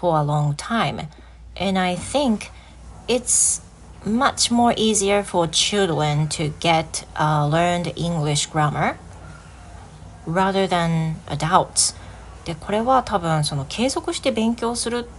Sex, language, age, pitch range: female, Japanese, 30-49, 150-210 Hz